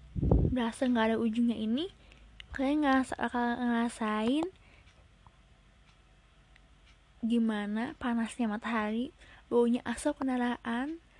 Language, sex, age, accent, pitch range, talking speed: Indonesian, female, 20-39, native, 220-260 Hz, 80 wpm